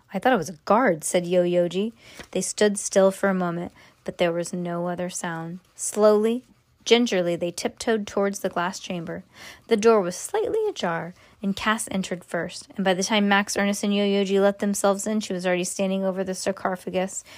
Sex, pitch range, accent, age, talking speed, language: female, 185-215 Hz, American, 20-39, 190 wpm, English